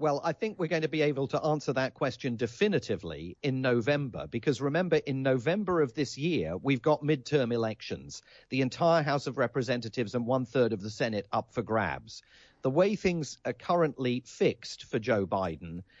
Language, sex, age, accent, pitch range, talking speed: English, male, 40-59, British, 125-150 Hz, 185 wpm